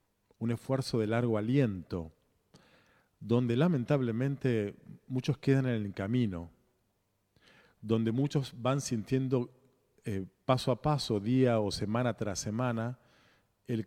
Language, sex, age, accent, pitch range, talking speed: Spanish, male, 40-59, Argentinian, 105-130 Hz, 110 wpm